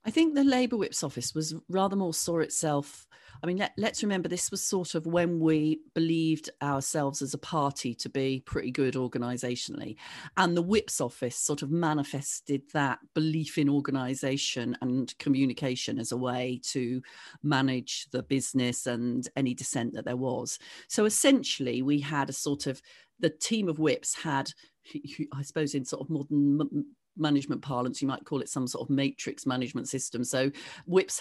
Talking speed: 170 wpm